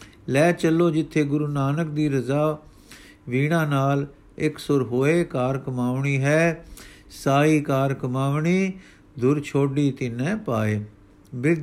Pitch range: 130-160 Hz